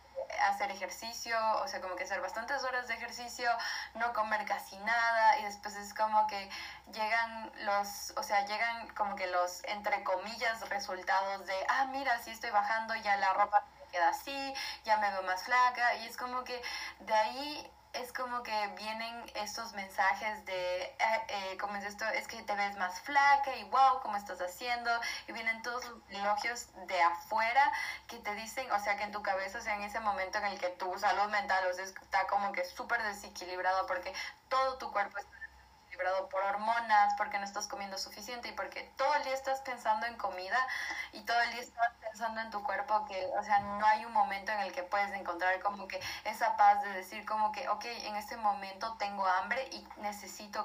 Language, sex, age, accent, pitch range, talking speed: Spanish, female, 20-39, Mexican, 200-235 Hz, 200 wpm